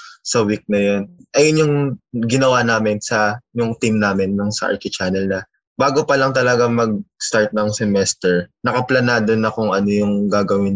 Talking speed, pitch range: 175 wpm, 105-125 Hz